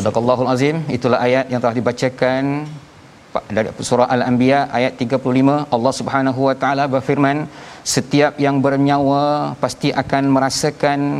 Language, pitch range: Malayalam, 120-140 Hz